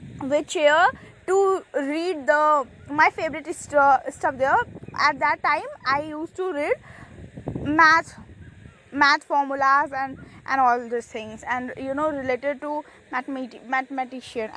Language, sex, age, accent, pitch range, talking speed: English, female, 20-39, Indian, 265-340 Hz, 125 wpm